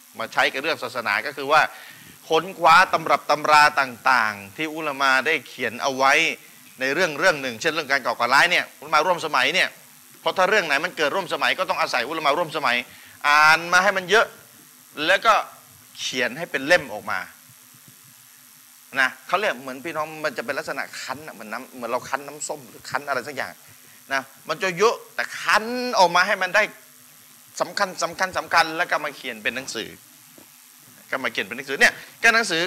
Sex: male